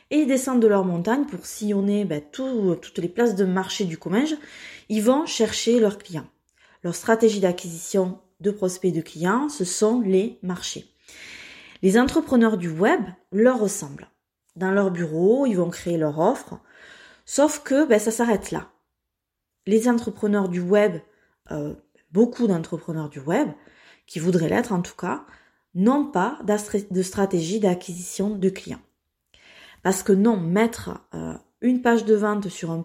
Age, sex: 20-39, female